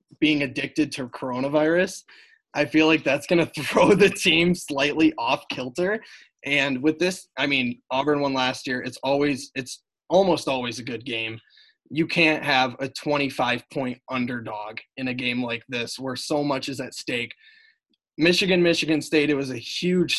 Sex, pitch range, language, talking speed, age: male, 130-160 Hz, English, 170 wpm, 20-39